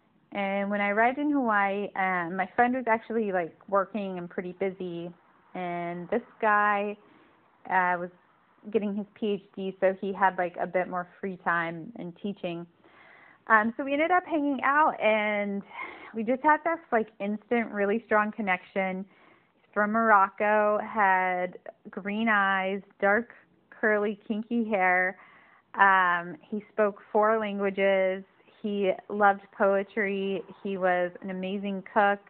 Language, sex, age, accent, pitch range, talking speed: English, female, 30-49, American, 190-220 Hz, 140 wpm